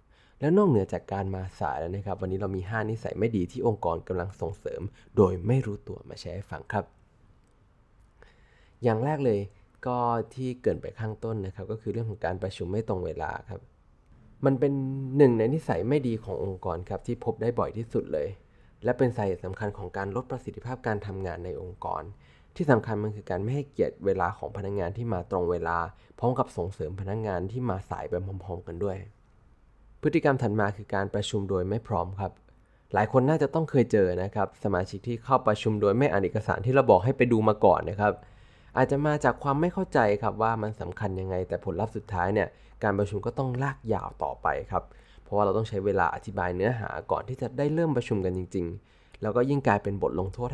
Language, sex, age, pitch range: Thai, male, 20-39, 95-120 Hz